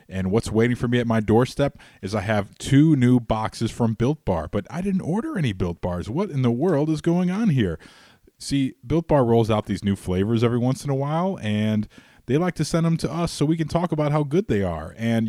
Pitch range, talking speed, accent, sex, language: 100-130 Hz, 245 wpm, American, male, English